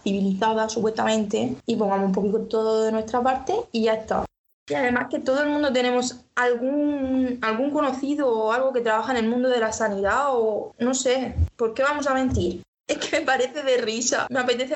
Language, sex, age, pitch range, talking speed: Spanish, female, 20-39, 215-250 Hz, 200 wpm